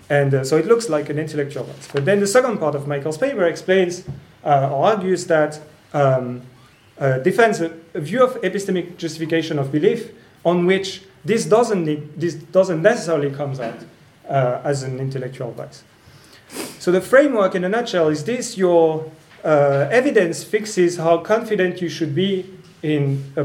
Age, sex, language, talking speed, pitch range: 40-59, male, English, 170 wpm, 140-185 Hz